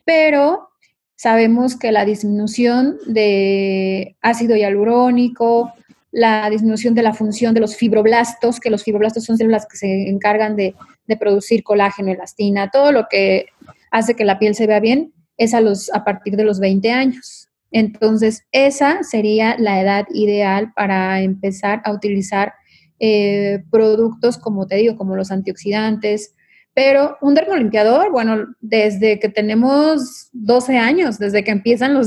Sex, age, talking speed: female, 30-49, 150 wpm